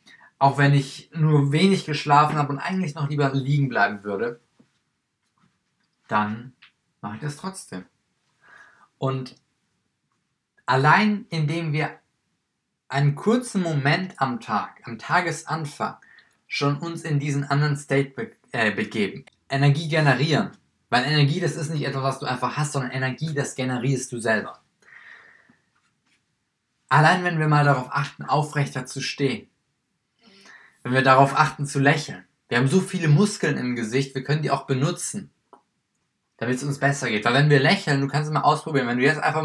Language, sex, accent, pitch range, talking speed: German, male, German, 130-150 Hz, 155 wpm